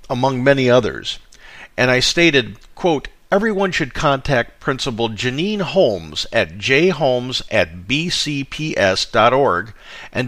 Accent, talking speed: American, 105 wpm